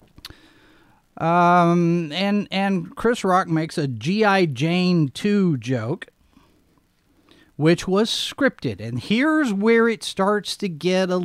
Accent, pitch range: American, 155-210 Hz